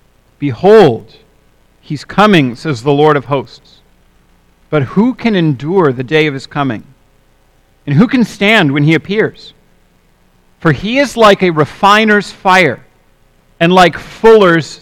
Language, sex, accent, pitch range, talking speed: English, male, American, 145-200 Hz, 140 wpm